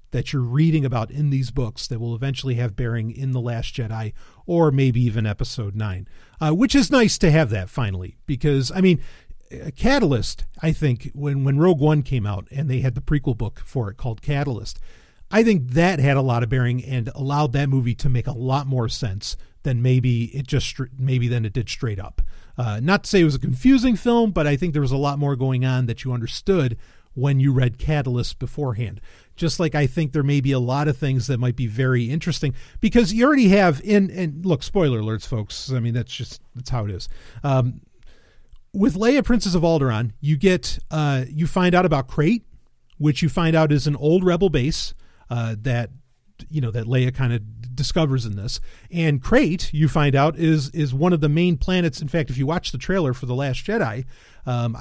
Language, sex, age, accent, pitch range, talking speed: English, male, 40-59, American, 120-155 Hz, 220 wpm